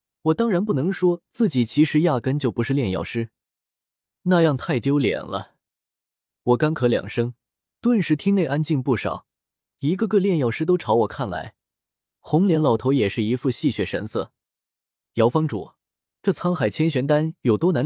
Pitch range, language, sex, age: 115-165 Hz, Chinese, male, 20-39